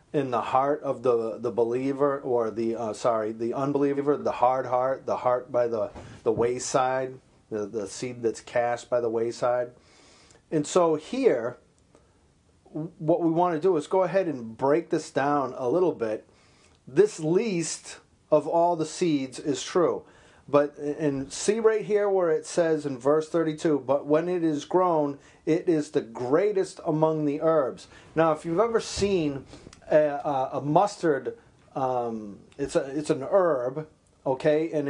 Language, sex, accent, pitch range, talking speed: English, male, American, 125-160 Hz, 165 wpm